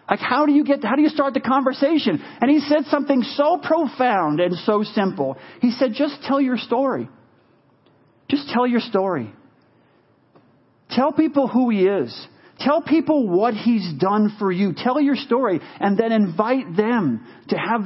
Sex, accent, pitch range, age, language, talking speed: male, American, 230-285 Hz, 40-59, English, 170 wpm